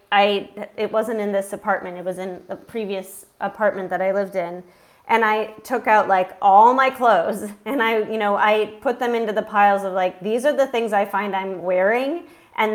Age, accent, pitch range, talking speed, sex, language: 30-49, American, 195-225 Hz, 210 wpm, female, English